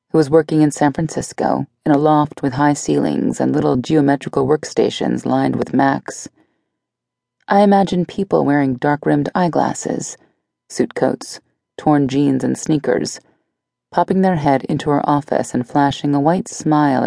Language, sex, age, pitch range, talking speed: English, female, 30-49, 140-180 Hz, 145 wpm